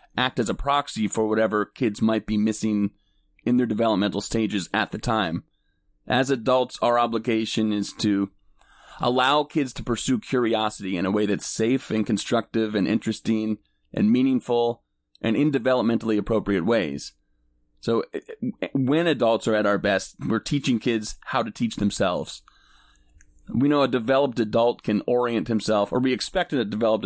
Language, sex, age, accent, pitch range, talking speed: English, male, 30-49, American, 105-125 Hz, 155 wpm